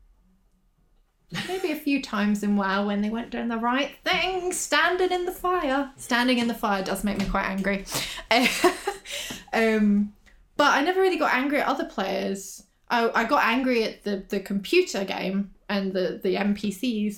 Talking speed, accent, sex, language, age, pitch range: 175 wpm, British, female, English, 10-29, 195-240 Hz